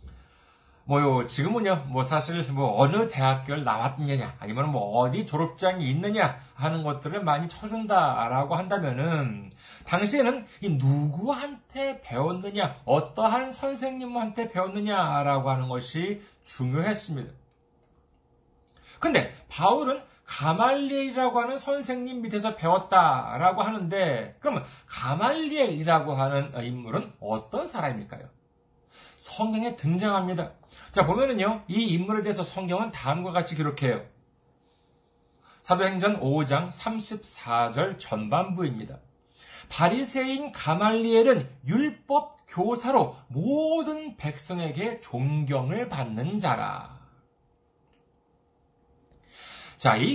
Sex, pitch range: male, 145-225 Hz